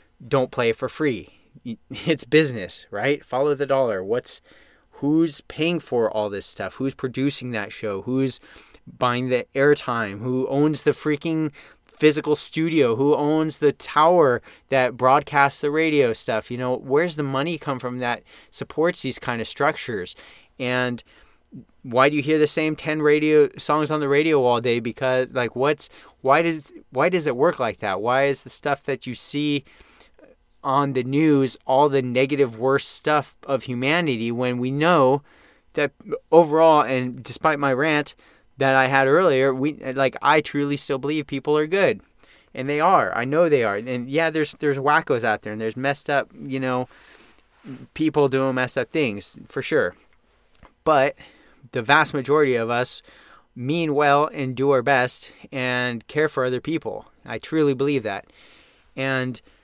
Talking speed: 170 wpm